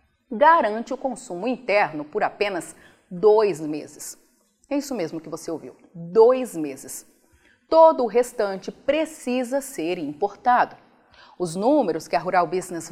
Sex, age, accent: female, 30-49, Brazilian